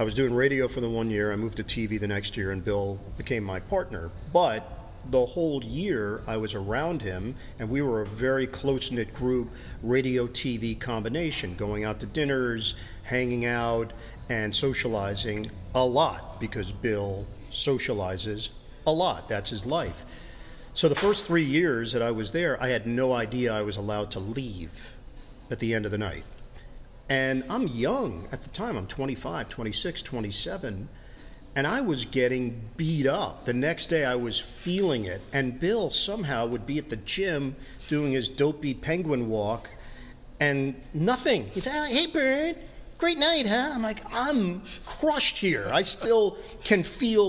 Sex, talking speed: male, 170 wpm